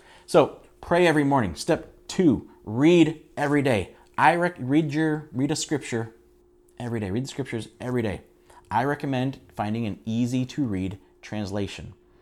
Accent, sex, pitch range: American, male, 100-140 Hz